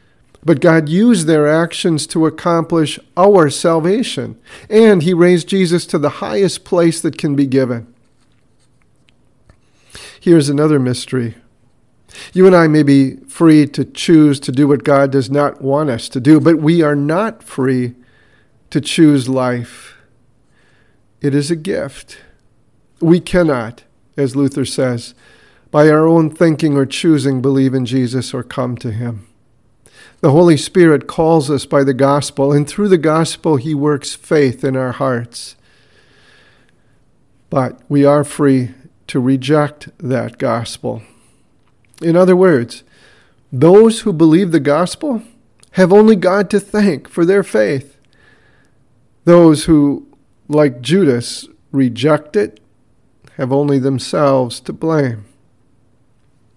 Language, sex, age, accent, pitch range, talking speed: English, male, 50-69, American, 125-165 Hz, 135 wpm